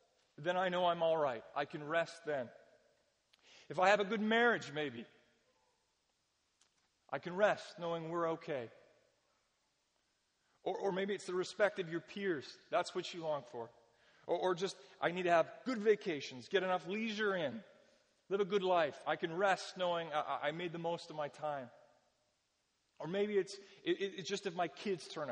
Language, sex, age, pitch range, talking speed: English, male, 40-59, 165-205 Hz, 180 wpm